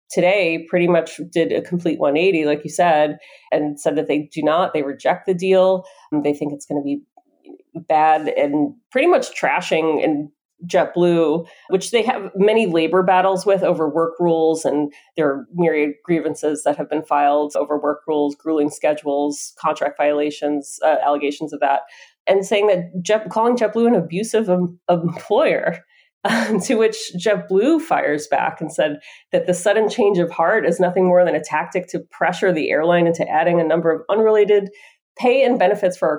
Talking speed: 175 wpm